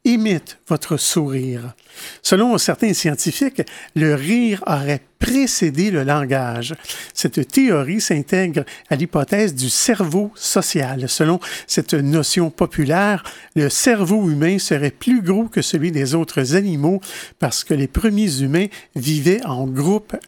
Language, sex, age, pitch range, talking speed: French, male, 50-69, 145-195 Hz, 125 wpm